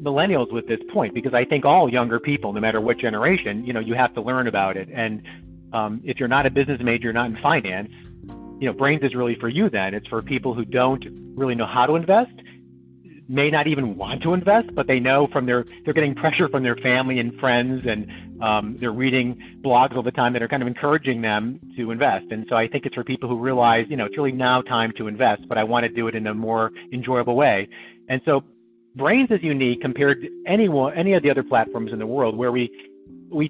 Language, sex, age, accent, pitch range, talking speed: English, male, 40-59, American, 115-145 Hz, 240 wpm